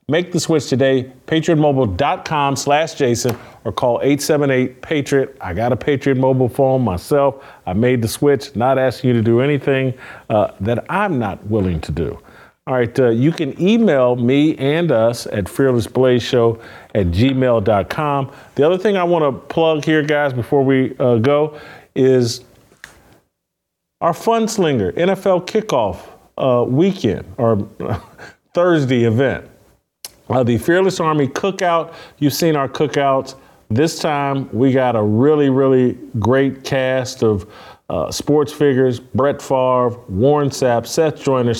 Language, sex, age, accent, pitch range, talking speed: English, male, 40-59, American, 120-145 Hz, 145 wpm